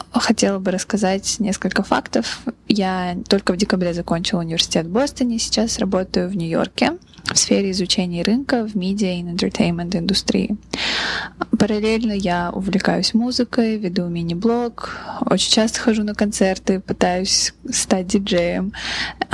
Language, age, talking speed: Russian, 20-39, 125 wpm